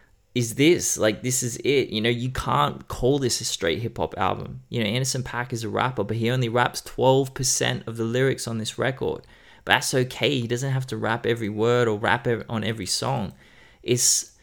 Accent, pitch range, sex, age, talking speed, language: Australian, 105-130 Hz, male, 20-39, 210 wpm, English